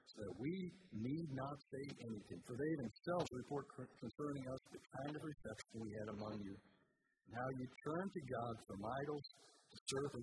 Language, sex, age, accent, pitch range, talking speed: English, male, 50-69, American, 110-140 Hz, 190 wpm